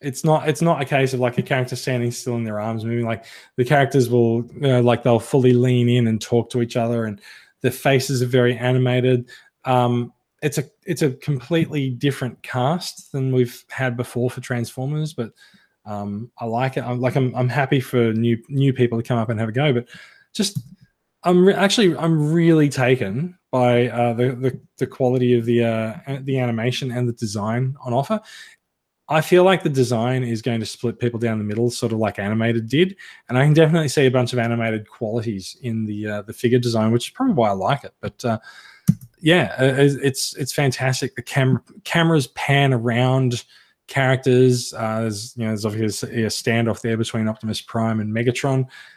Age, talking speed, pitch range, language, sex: 20-39, 200 wpm, 115-140 Hz, English, male